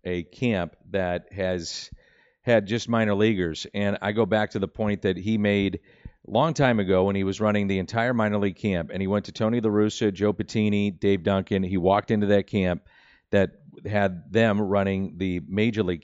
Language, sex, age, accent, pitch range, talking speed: English, male, 40-59, American, 90-110 Hz, 200 wpm